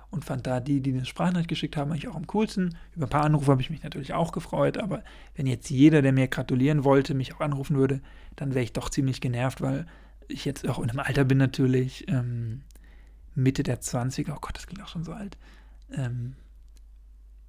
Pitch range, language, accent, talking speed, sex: 130-150 Hz, German, German, 215 wpm, male